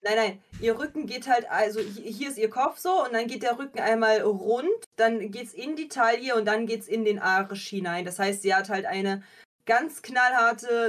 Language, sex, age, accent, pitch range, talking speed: German, female, 20-39, German, 205-245 Hz, 215 wpm